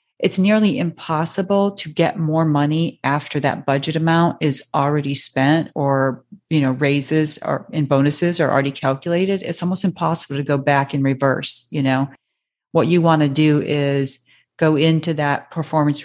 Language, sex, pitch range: English, female, 135-160 Hz